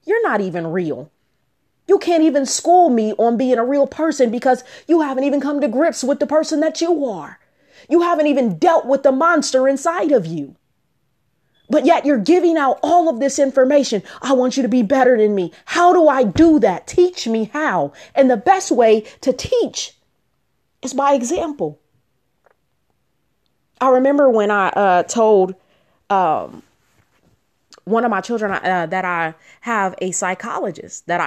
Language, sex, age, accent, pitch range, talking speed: English, female, 30-49, American, 205-295 Hz, 170 wpm